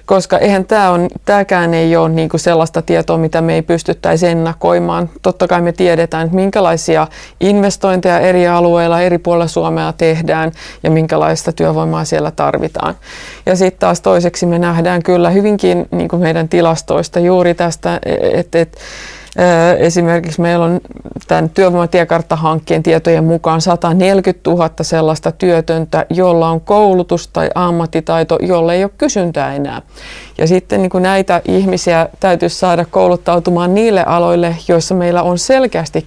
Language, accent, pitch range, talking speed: Finnish, native, 160-180 Hz, 140 wpm